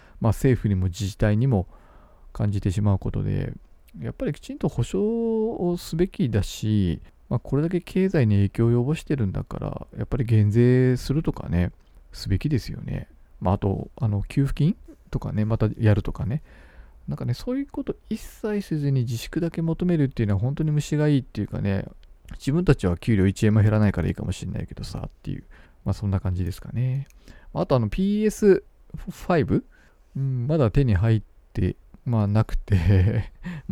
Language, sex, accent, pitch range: Japanese, male, native, 100-155 Hz